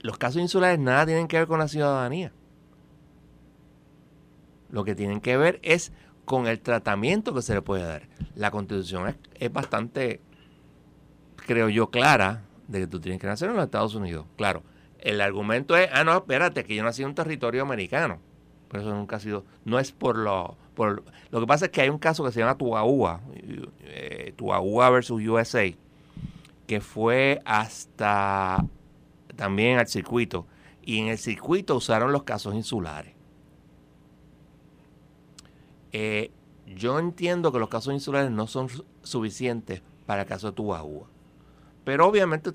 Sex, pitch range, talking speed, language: male, 105-150 Hz, 160 wpm, Spanish